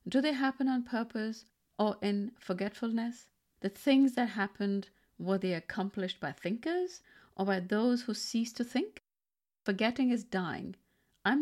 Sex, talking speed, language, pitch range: female, 145 wpm, English, 190-250 Hz